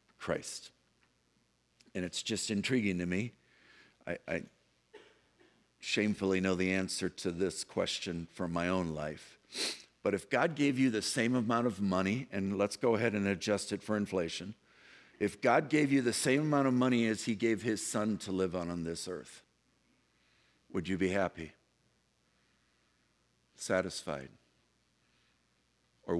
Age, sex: 60-79, male